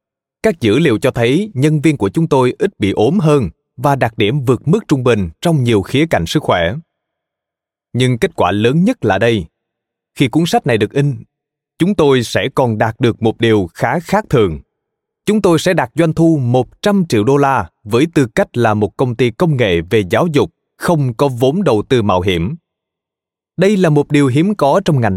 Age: 20-39